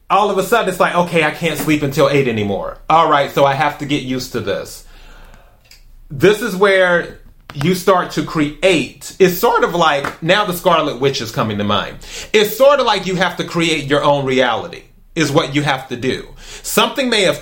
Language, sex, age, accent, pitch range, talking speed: English, male, 30-49, American, 140-175 Hz, 215 wpm